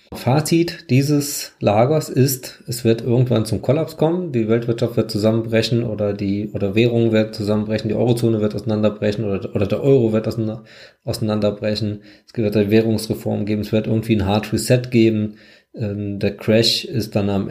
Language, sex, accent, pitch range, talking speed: German, male, German, 110-125 Hz, 160 wpm